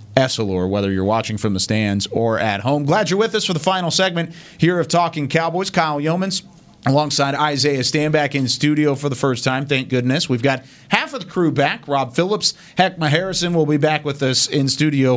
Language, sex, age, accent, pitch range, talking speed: English, male, 30-49, American, 125-160 Hz, 210 wpm